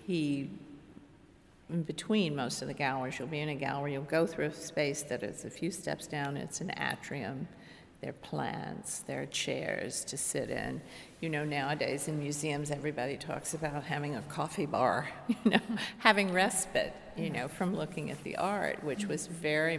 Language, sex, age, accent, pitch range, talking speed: English, female, 50-69, American, 145-180 Hz, 185 wpm